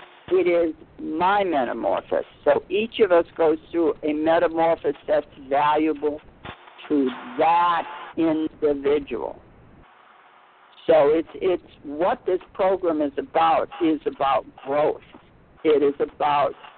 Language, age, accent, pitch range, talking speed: English, 60-79, American, 150-245 Hz, 110 wpm